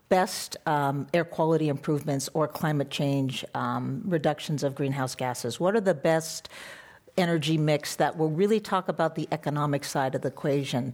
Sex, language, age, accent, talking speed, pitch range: female, English, 50-69, American, 165 wpm, 145-175 Hz